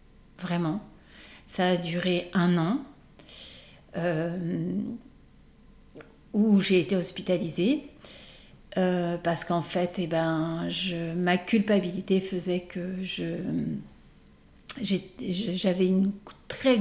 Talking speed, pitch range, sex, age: 95 wpm, 170-200 Hz, female, 60-79